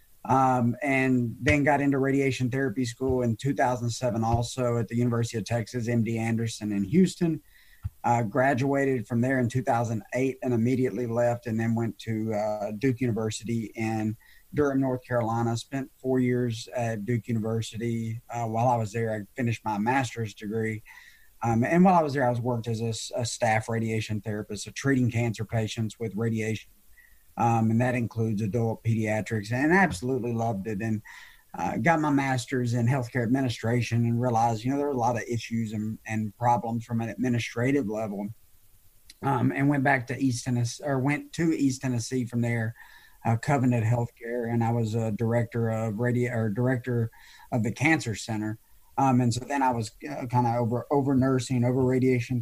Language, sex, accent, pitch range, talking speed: English, male, American, 115-130 Hz, 180 wpm